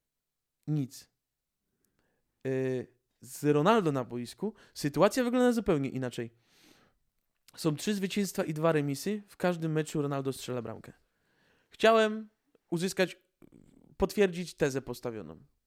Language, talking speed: Polish, 100 wpm